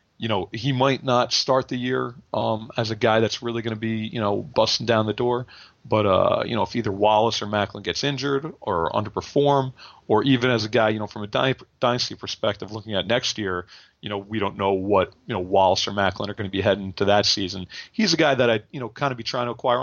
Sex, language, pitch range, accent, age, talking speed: male, English, 105-135 Hz, American, 40-59, 250 wpm